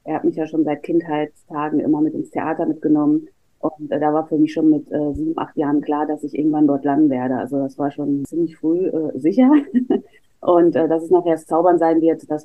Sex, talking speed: female, 230 wpm